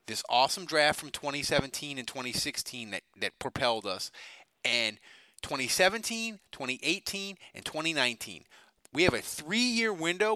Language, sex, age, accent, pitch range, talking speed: English, male, 30-49, American, 130-200 Hz, 120 wpm